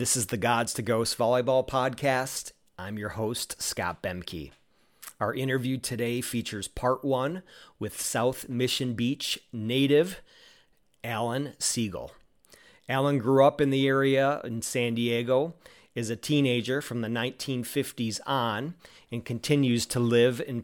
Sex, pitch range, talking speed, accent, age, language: male, 115-135 Hz, 135 wpm, American, 40-59, English